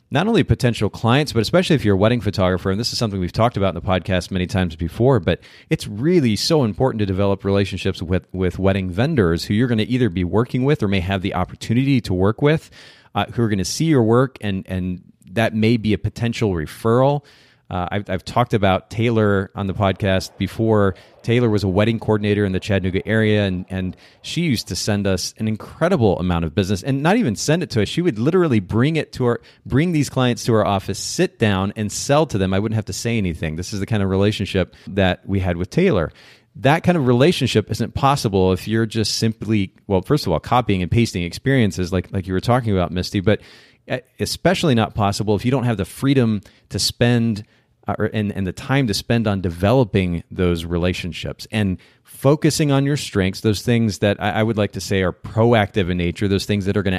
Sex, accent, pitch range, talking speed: male, American, 95-120 Hz, 225 wpm